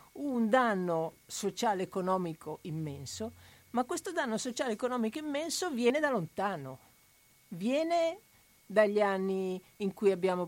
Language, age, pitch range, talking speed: Italian, 50-69, 180-255 Hz, 115 wpm